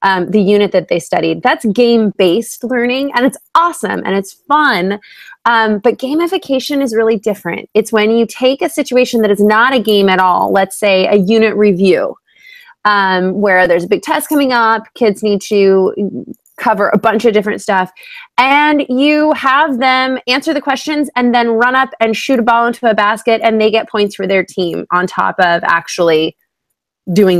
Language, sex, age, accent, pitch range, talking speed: English, female, 20-39, American, 200-265 Hz, 190 wpm